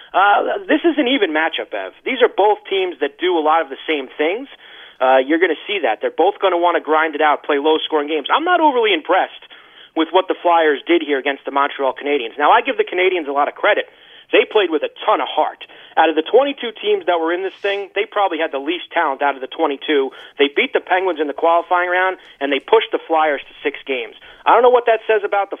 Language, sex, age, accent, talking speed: English, male, 30-49, American, 265 wpm